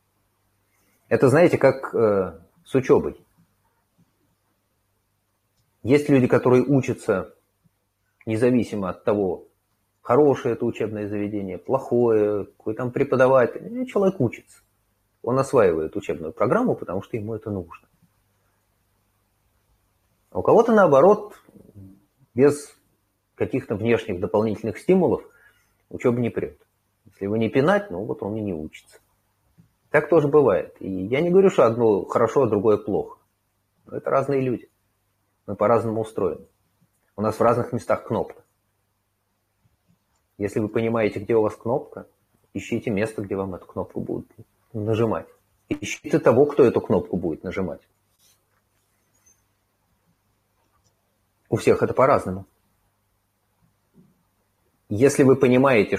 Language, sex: Russian, male